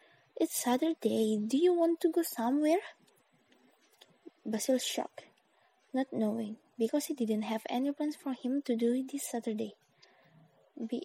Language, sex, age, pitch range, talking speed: English, female, 20-39, 215-285 Hz, 135 wpm